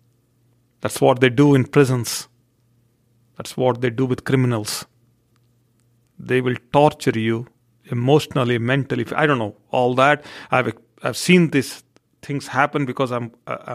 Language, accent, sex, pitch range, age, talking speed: English, Indian, male, 120-145 Hz, 40-59, 135 wpm